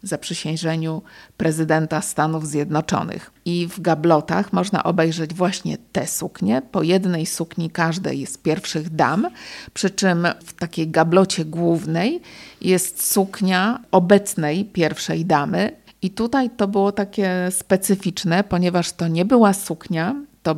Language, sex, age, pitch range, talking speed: Polish, female, 50-69, 160-195 Hz, 125 wpm